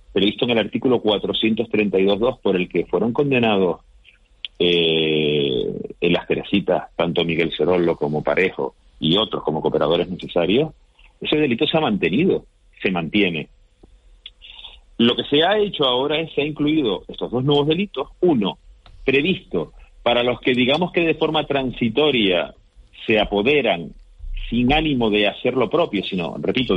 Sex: male